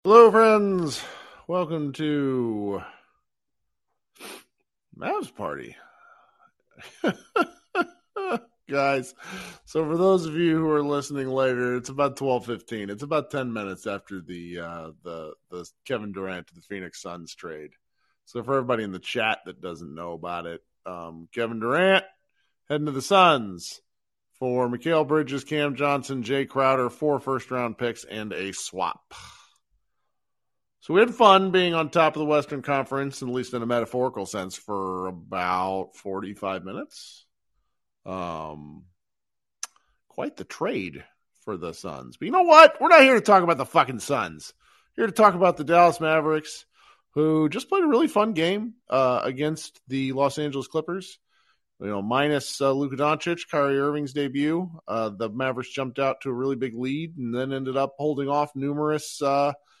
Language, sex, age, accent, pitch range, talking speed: English, male, 40-59, American, 115-160 Hz, 155 wpm